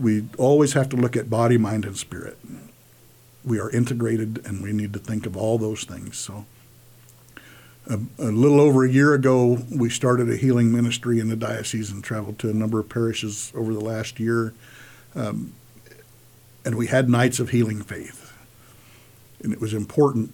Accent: American